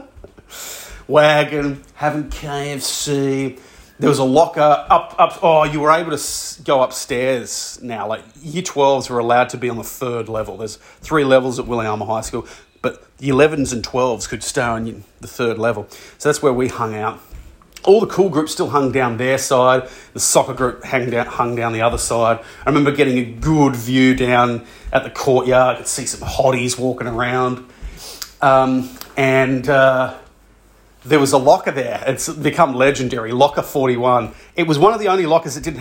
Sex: male